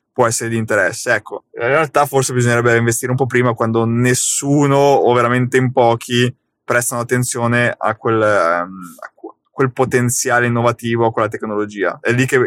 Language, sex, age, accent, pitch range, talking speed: Italian, male, 20-39, native, 110-130 Hz, 160 wpm